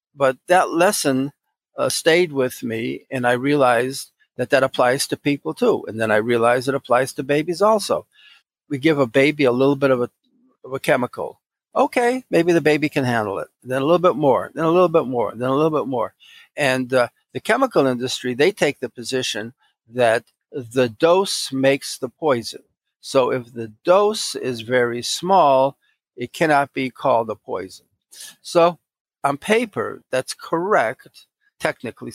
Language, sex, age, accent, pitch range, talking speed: English, male, 50-69, American, 125-160 Hz, 170 wpm